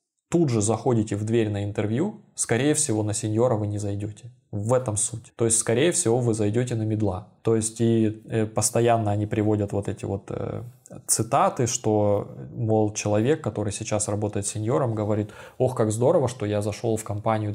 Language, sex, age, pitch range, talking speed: Russian, male, 20-39, 105-120 Hz, 180 wpm